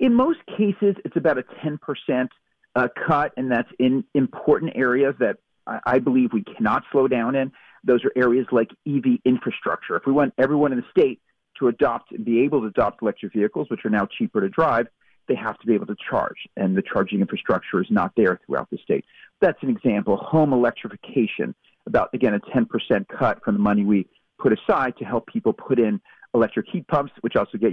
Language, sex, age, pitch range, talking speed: English, male, 40-59, 120-170 Hz, 200 wpm